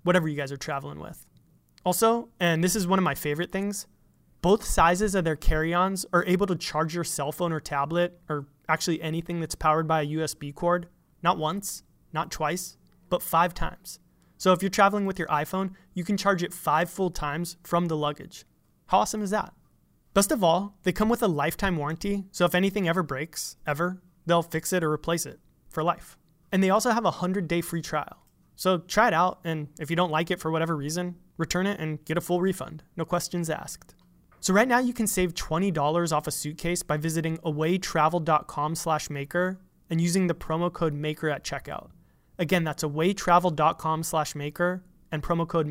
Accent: American